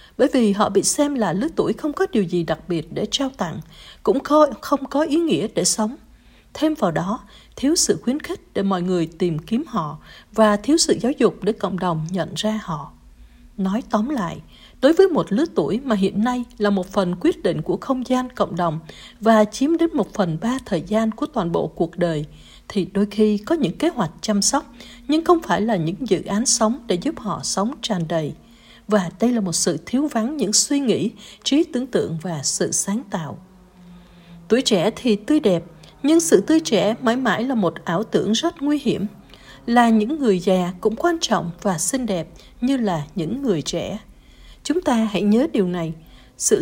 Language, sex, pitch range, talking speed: Vietnamese, female, 180-255 Hz, 210 wpm